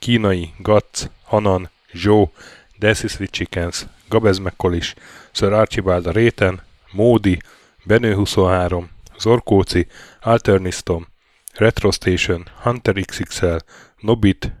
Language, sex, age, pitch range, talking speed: Hungarian, male, 10-29, 90-110 Hz, 70 wpm